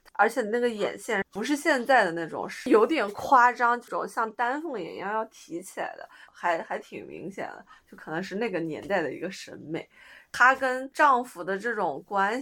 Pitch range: 180-250 Hz